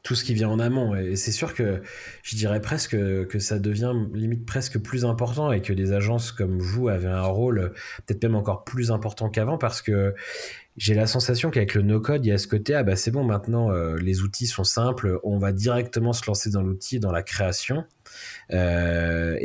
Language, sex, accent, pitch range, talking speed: French, male, French, 95-120 Hz, 215 wpm